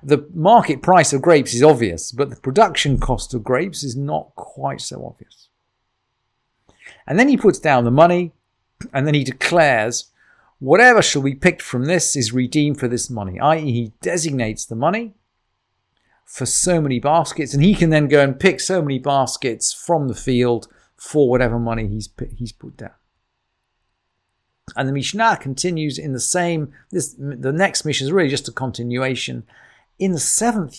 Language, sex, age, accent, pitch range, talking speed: English, male, 40-59, British, 130-185 Hz, 170 wpm